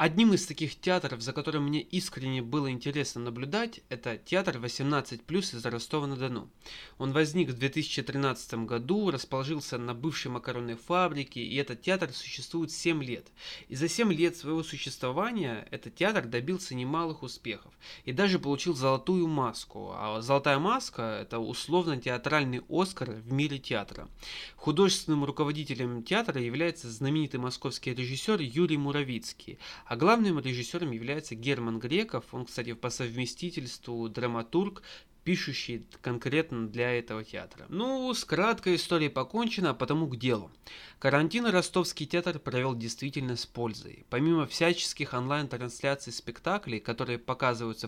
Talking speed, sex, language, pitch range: 130 wpm, male, Russian, 120-165 Hz